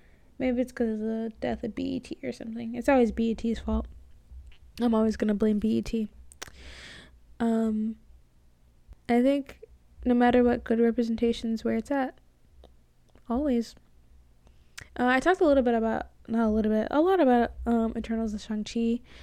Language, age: English, 10-29